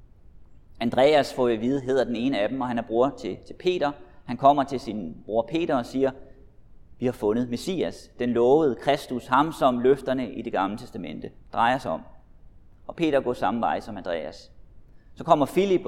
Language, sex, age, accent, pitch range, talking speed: Danish, male, 30-49, native, 110-155 Hz, 195 wpm